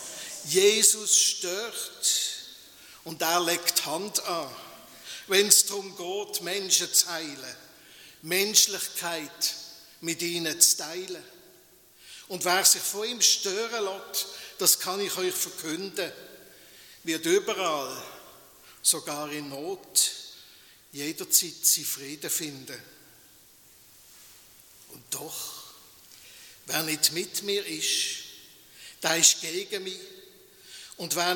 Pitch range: 170-215 Hz